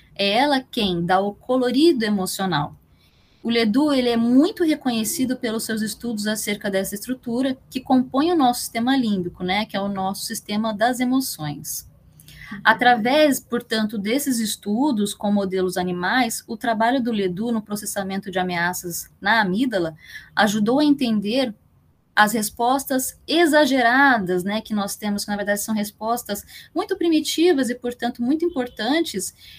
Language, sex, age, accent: Portuguese, female, 10-29, Brazilian